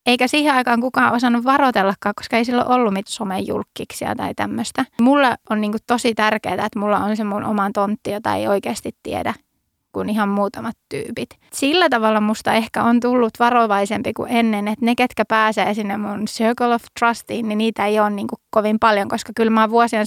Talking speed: 190 wpm